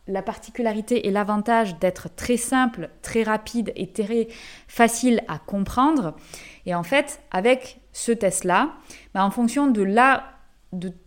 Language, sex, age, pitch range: French, female, 20-39, 200-255 Hz